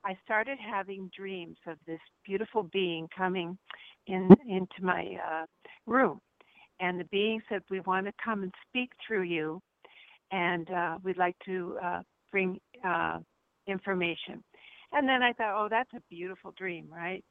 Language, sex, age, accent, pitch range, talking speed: English, female, 60-79, American, 180-210 Hz, 155 wpm